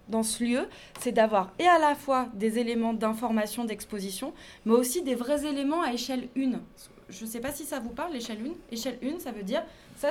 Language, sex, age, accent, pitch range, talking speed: French, female, 20-39, French, 215-275 Hz, 220 wpm